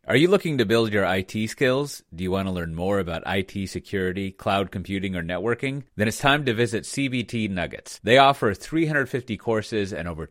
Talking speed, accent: 200 wpm, American